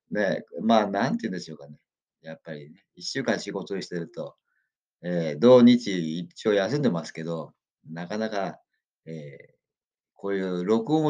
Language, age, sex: Japanese, 50-69, male